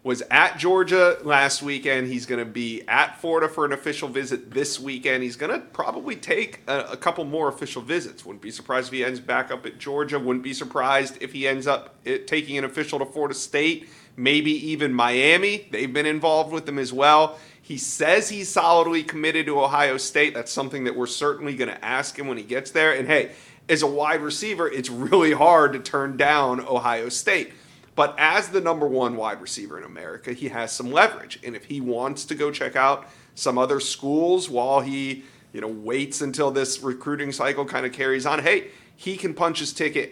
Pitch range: 130-155 Hz